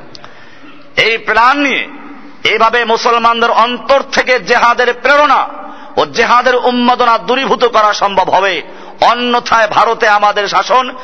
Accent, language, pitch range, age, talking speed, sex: native, Bengali, 215-245 Hz, 50-69, 110 wpm, male